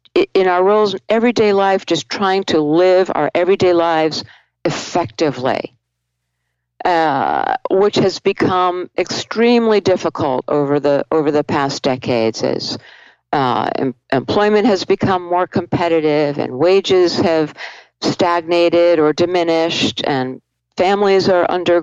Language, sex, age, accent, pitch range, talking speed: English, female, 50-69, American, 145-195 Hz, 120 wpm